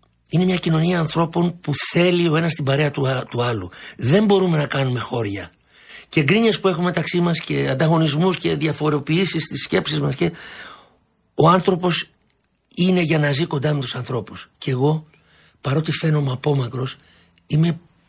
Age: 60-79